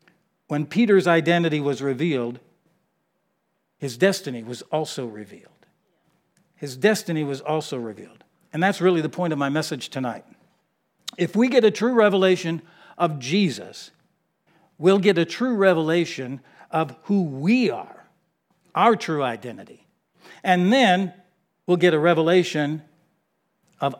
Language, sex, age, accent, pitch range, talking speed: English, male, 60-79, American, 155-195 Hz, 130 wpm